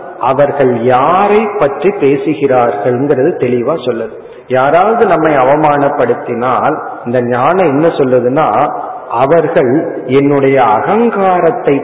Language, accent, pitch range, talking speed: Tamil, native, 130-180 Hz, 75 wpm